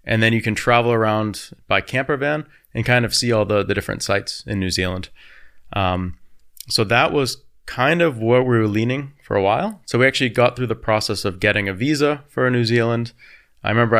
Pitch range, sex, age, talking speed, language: 100-125 Hz, male, 30-49, 215 wpm, German